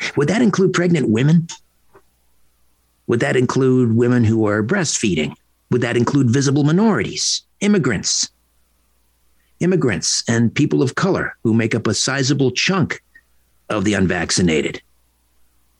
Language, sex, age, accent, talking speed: English, male, 50-69, American, 120 wpm